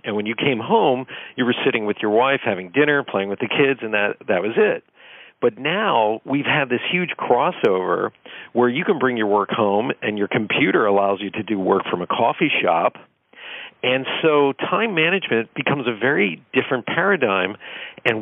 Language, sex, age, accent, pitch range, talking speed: English, male, 50-69, American, 105-140 Hz, 190 wpm